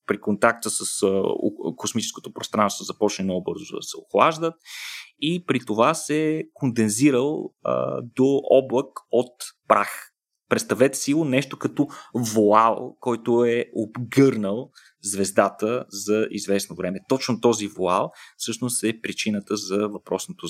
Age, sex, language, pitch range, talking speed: 30-49, male, Bulgarian, 100-125 Hz, 115 wpm